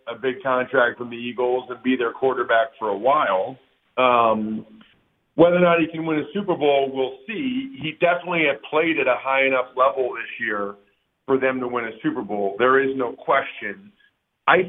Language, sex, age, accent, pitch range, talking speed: English, male, 50-69, American, 130-195 Hz, 195 wpm